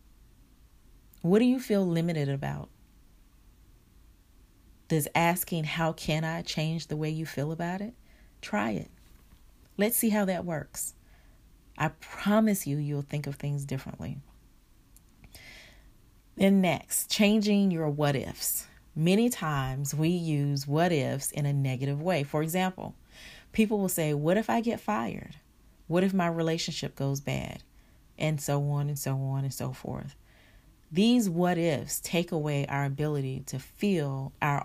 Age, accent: 30-49, American